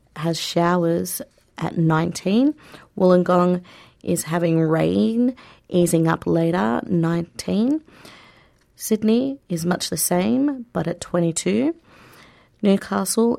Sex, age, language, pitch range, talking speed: female, 30-49, English, 165-195 Hz, 95 wpm